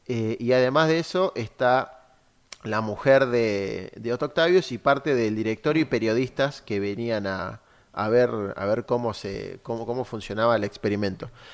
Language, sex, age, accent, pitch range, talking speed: Spanish, male, 30-49, Argentinian, 115-150 Hz, 165 wpm